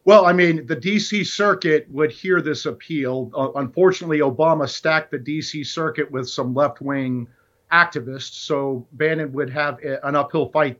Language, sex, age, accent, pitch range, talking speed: English, male, 50-69, American, 150-175 Hz, 160 wpm